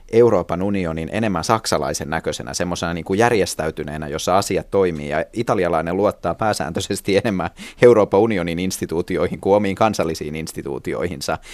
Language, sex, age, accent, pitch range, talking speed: Finnish, male, 30-49, native, 80-105 Hz, 120 wpm